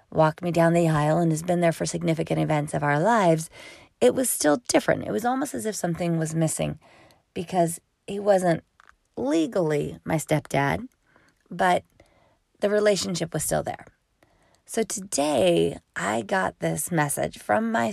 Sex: female